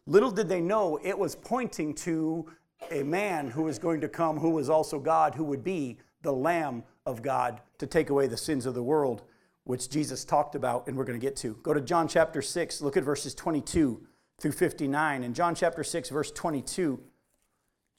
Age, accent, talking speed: 50-69, American, 205 wpm